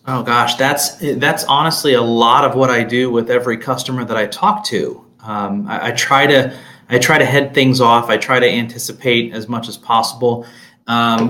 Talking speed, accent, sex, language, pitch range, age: 200 wpm, American, male, English, 115-130 Hz, 30-49